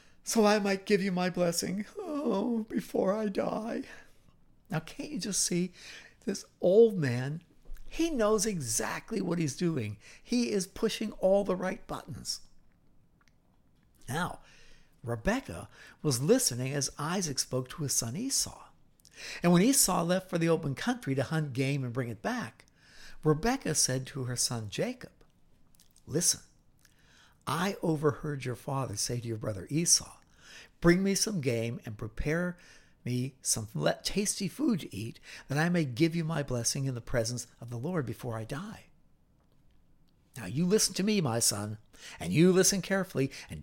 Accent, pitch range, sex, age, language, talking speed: American, 130-195 Hz, male, 60-79, English, 155 wpm